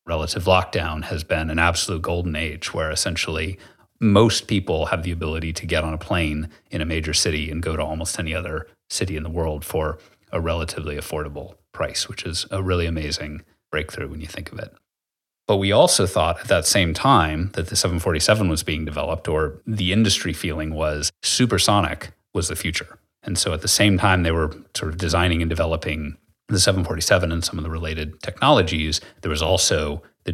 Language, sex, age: English, male, 30-49